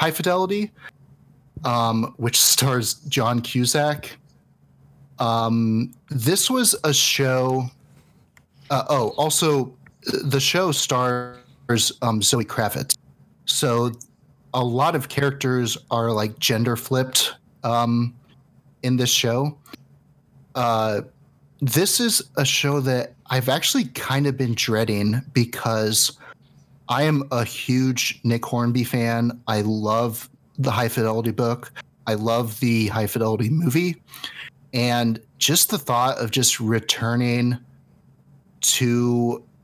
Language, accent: English, American